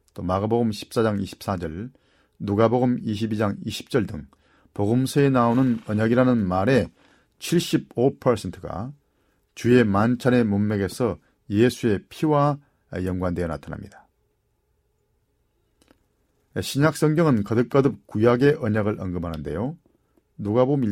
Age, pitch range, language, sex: 40-59, 100-130 Hz, Korean, male